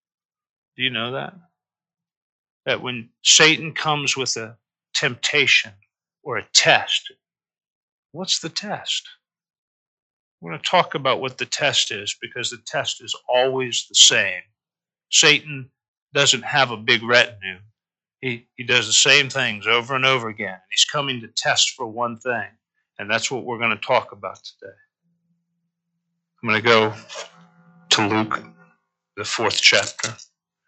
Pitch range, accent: 110-150 Hz, American